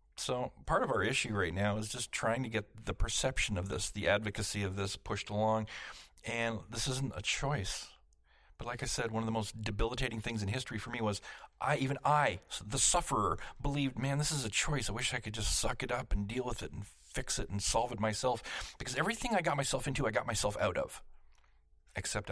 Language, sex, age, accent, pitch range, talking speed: English, male, 40-59, American, 100-120 Hz, 225 wpm